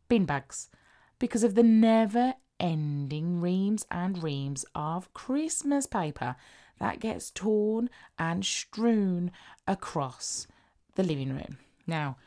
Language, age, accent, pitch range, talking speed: English, 20-39, British, 145-180 Hz, 110 wpm